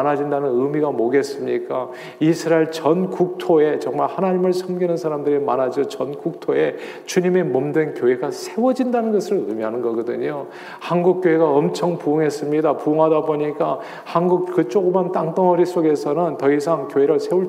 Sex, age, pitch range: male, 40-59, 140-185 Hz